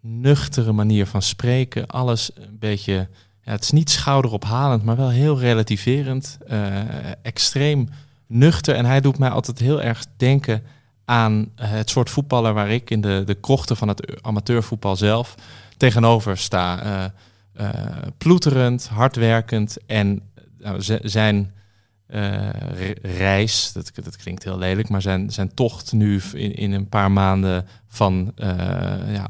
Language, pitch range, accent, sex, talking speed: Dutch, 100-120 Hz, Dutch, male, 140 wpm